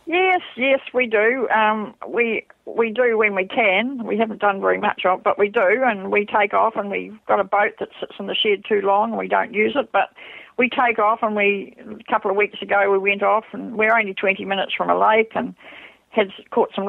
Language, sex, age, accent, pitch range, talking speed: English, female, 50-69, Australian, 190-225 Hz, 240 wpm